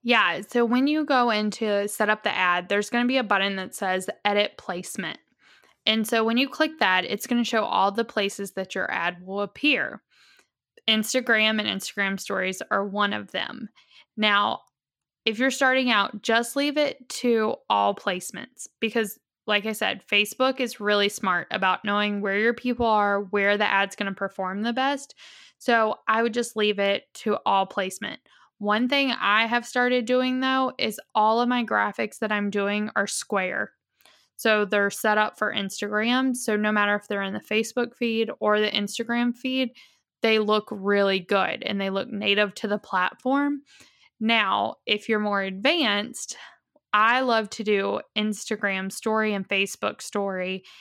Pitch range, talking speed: 200-235 Hz, 175 wpm